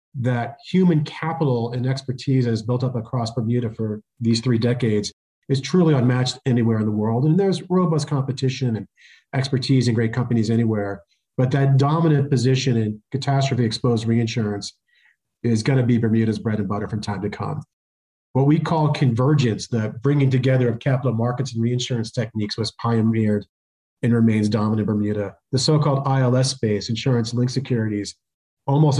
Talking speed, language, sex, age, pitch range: 165 wpm, English, male, 40-59, 110-135 Hz